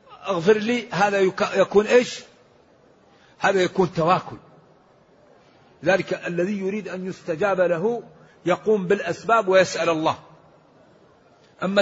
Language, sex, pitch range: Arabic, male, 170-210 Hz